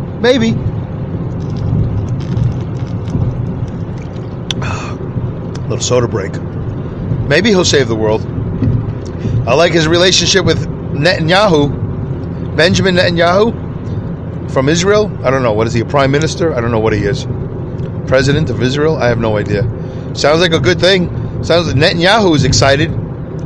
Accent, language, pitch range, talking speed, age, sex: American, English, 125-155 Hz, 135 wpm, 40-59, male